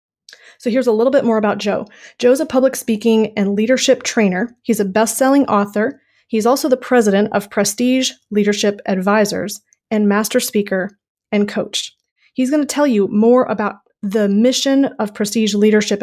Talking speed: 170 wpm